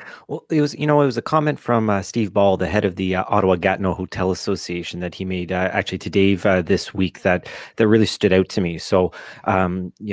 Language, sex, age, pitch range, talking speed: English, male, 30-49, 95-110 Hz, 250 wpm